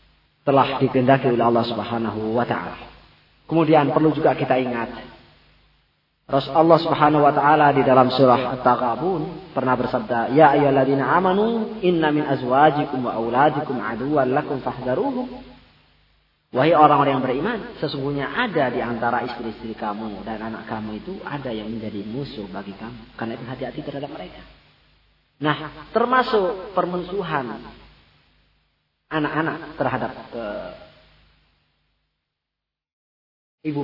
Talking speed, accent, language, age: 115 wpm, native, Indonesian, 30-49